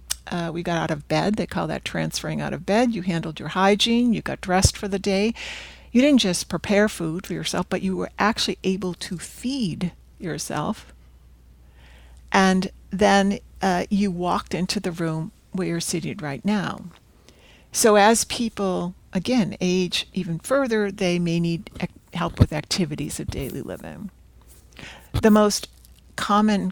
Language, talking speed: English, 155 wpm